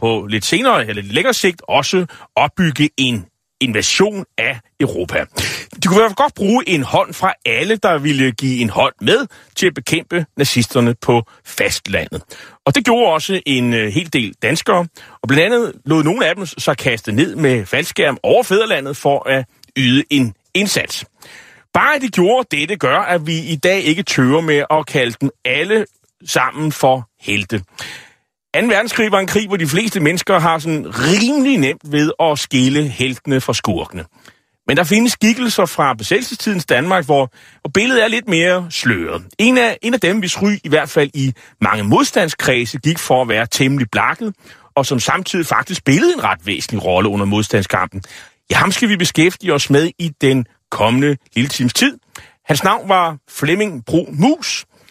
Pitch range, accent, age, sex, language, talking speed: 130-190 Hz, native, 30-49, male, Danish, 180 wpm